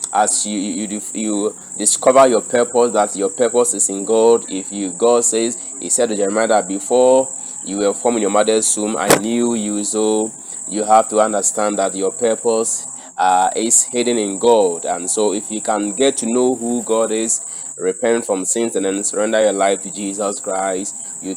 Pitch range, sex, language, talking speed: 100-120 Hz, male, English, 195 wpm